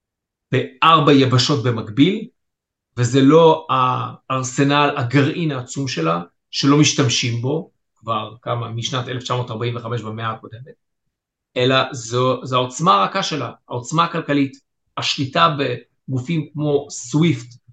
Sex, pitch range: male, 125-155 Hz